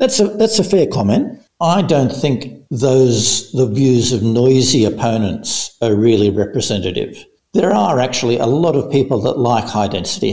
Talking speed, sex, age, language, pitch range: 170 wpm, male, 60-79, English, 115-140 Hz